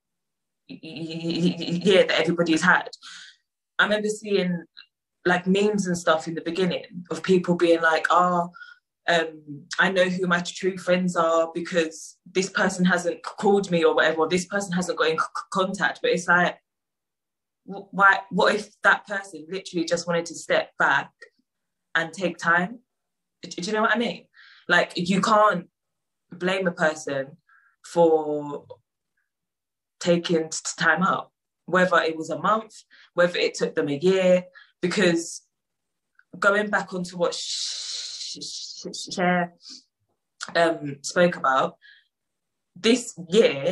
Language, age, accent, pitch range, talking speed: English, 20-39, British, 165-195 Hz, 135 wpm